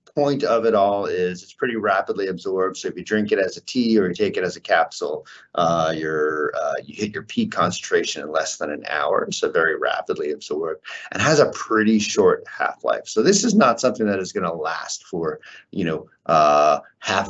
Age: 30-49